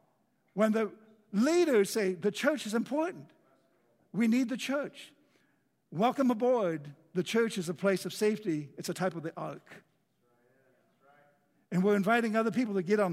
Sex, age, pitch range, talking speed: male, 60-79, 165-210 Hz, 160 wpm